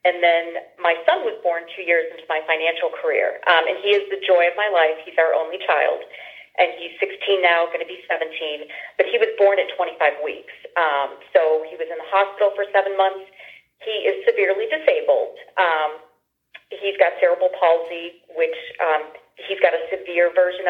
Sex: female